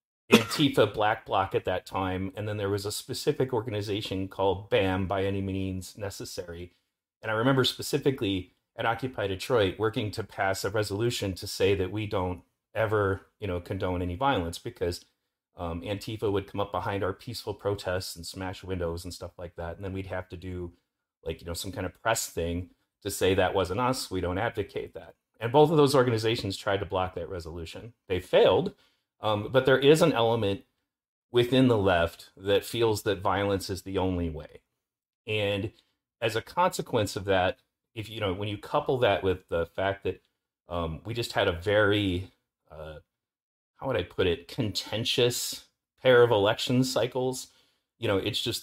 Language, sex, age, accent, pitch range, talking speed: English, male, 30-49, American, 90-110 Hz, 185 wpm